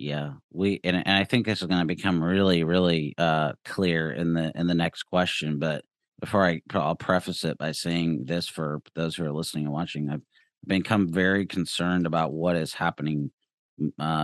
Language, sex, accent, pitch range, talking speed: English, male, American, 80-95 Hz, 195 wpm